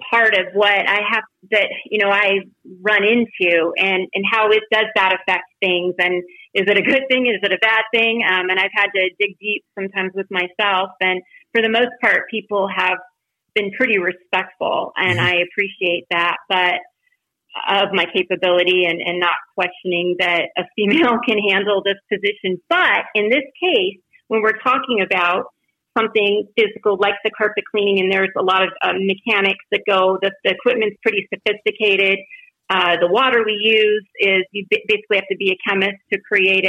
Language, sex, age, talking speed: English, female, 30-49, 185 wpm